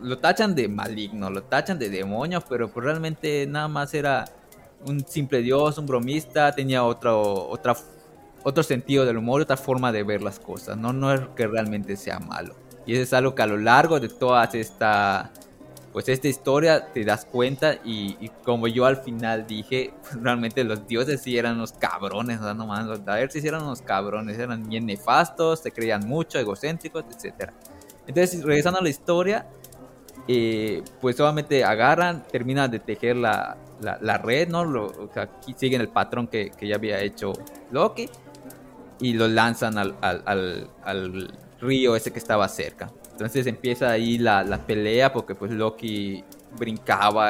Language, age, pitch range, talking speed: English, 20-39, 110-140 Hz, 175 wpm